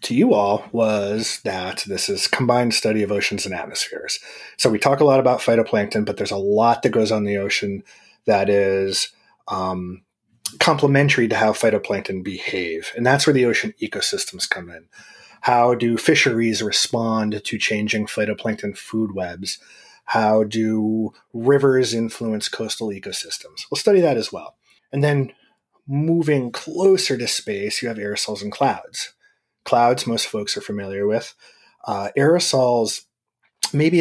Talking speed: 150 wpm